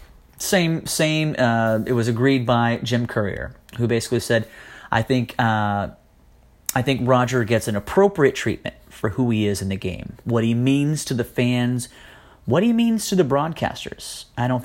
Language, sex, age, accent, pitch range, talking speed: English, male, 30-49, American, 105-130 Hz, 175 wpm